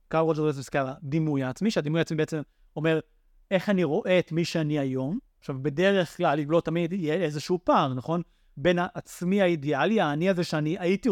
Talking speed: 180 wpm